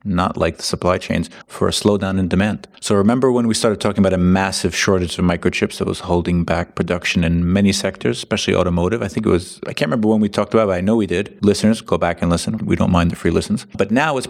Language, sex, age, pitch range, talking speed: English, male, 30-49, 85-95 Hz, 265 wpm